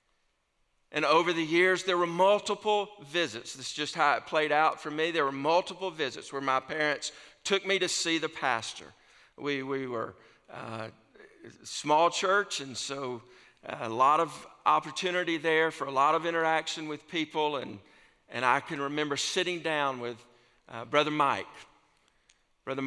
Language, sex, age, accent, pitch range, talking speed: English, male, 50-69, American, 135-165 Hz, 165 wpm